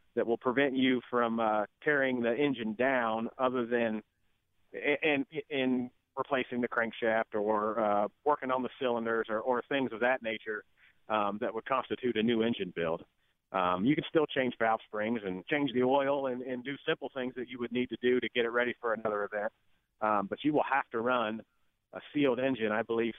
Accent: American